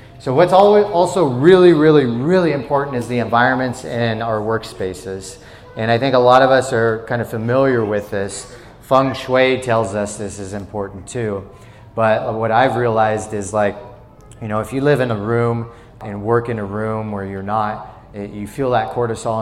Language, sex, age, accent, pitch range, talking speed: English, male, 30-49, American, 105-120 Hz, 190 wpm